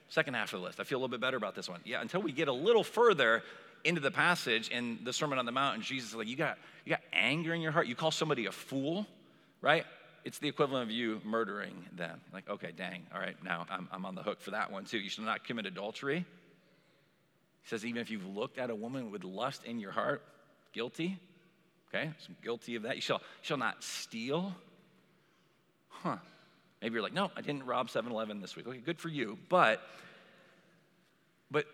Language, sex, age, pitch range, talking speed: English, male, 40-59, 130-180 Hz, 220 wpm